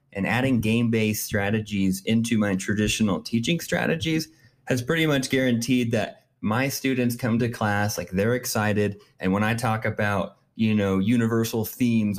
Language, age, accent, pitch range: English, 20-39, American, 110-135 Hz